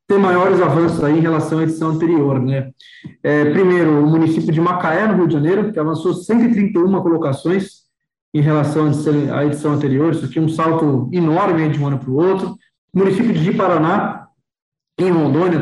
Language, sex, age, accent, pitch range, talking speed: Portuguese, male, 20-39, Brazilian, 155-190 Hz, 175 wpm